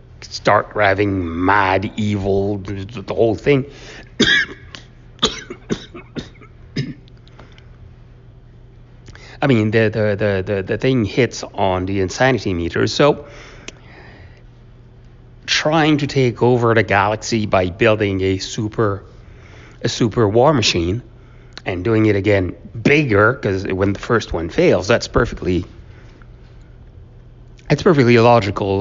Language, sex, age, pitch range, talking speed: English, male, 60-79, 105-135 Hz, 105 wpm